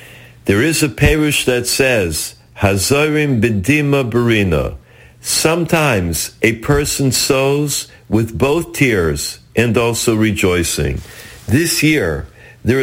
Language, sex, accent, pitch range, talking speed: English, male, American, 120-160 Hz, 105 wpm